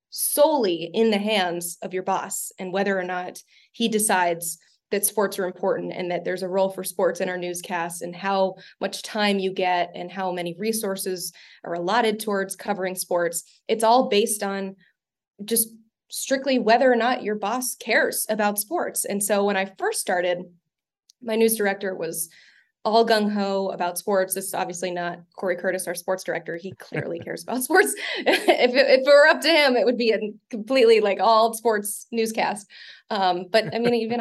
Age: 20-39